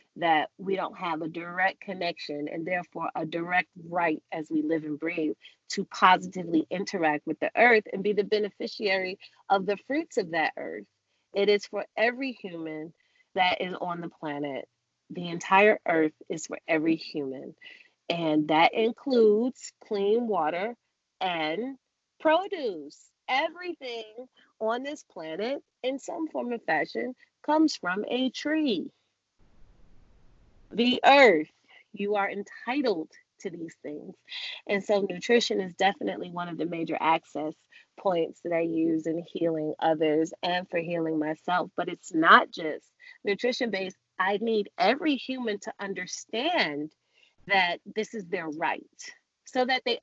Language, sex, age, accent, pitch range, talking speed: English, female, 30-49, American, 170-240 Hz, 145 wpm